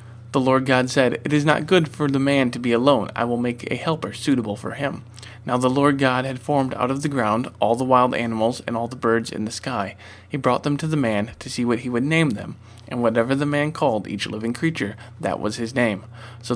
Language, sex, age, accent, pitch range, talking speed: English, male, 20-39, American, 115-130 Hz, 250 wpm